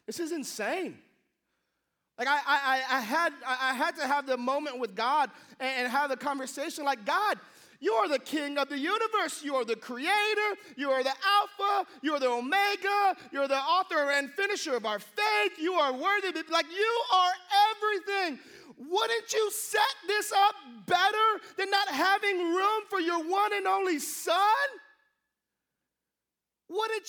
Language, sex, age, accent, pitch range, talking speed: English, male, 30-49, American, 275-400 Hz, 155 wpm